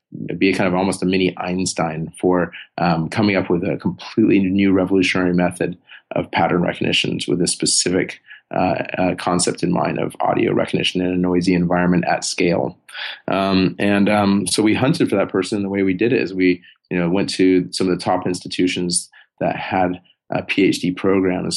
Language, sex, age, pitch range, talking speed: English, male, 30-49, 90-95 Hz, 190 wpm